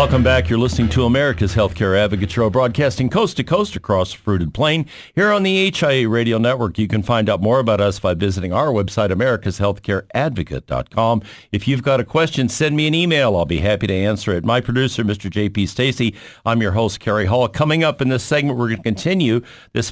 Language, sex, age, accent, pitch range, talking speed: English, male, 50-69, American, 95-130 Hz, 200 wpm